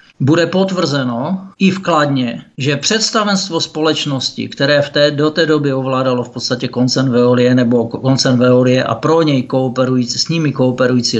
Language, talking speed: Czech, 140 wpm